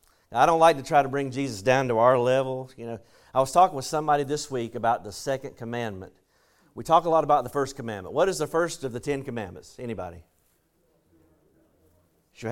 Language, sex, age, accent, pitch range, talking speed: English, male, 40-59, American, 120-150 Hz, 205 wpm